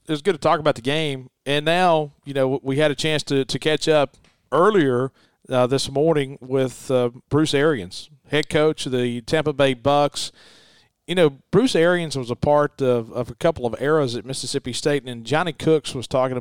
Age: 40-59